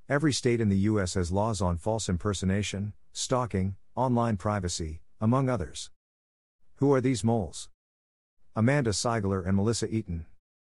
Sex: male